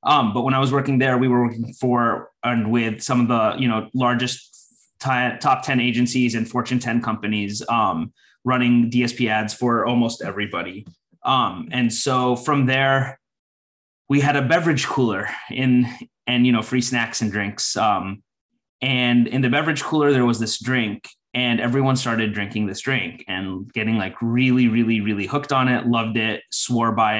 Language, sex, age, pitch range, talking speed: English, male, 20-39, 110-130 Hz, 180 wpm